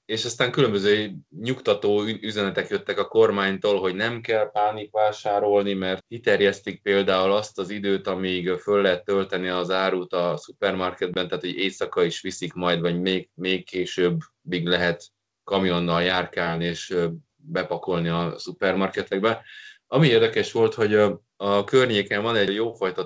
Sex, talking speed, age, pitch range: male, 140 wpm, 20-39, 90-110 Hz